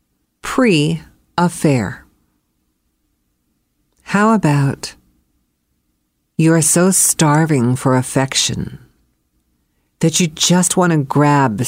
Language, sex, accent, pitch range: English, female, American, 115-190 Hz